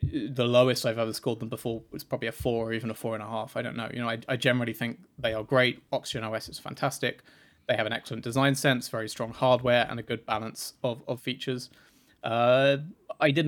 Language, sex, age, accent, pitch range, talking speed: English, male, 20-39, British, 115-130 Hz, 235 wpm